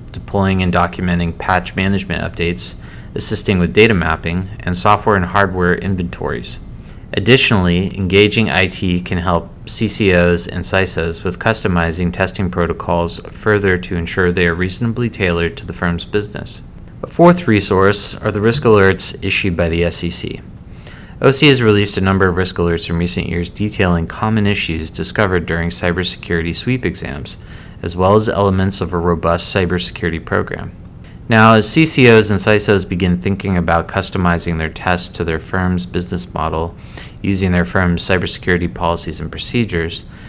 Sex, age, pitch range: male, 30-49, 85-105 Hz